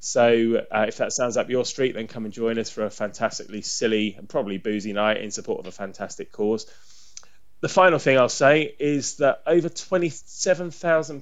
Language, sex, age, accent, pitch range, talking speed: English, male, 20-39, British, 110-135 Hz, 195 wpm